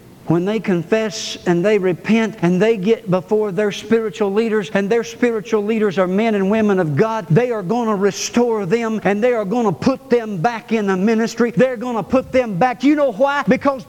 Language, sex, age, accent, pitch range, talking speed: English, male, 50-69, American, 225-305 Hz, 215 wpm